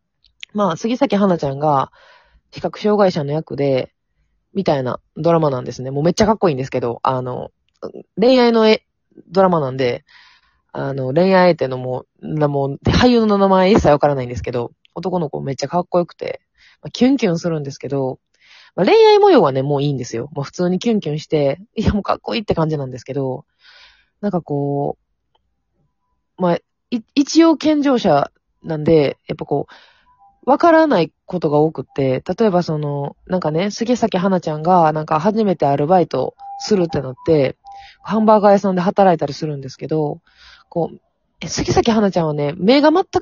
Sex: female